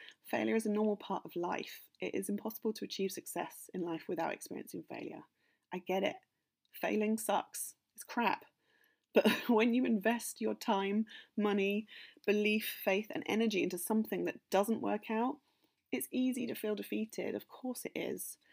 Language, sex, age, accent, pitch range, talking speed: English, female, 30-49, British, 180-225 Hz, 165 wpm